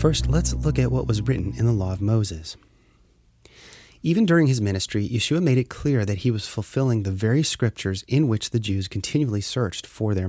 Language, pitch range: English, 100-130 Hz